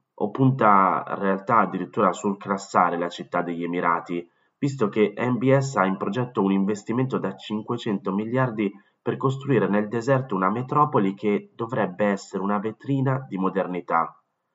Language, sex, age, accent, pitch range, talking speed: Italian, male, 30-49, native, 95-130 Hz, 145 wpm